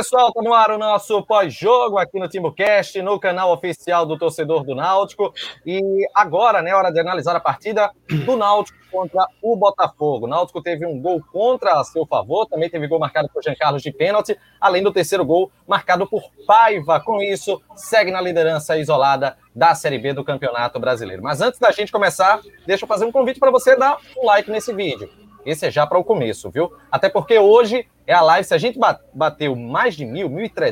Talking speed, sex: 200 wpm, male